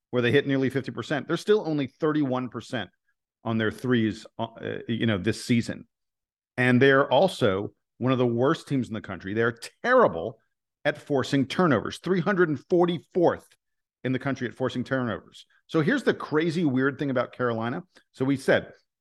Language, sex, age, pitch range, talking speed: English, male, 50-69, 125-165 Hz, 160 wpm